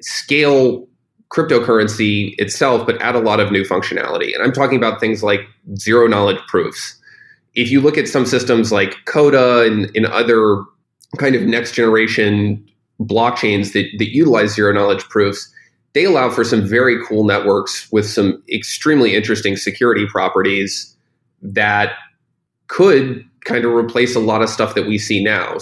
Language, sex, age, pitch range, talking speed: English, male, 20-39, 100-120 Hz, 155 wpm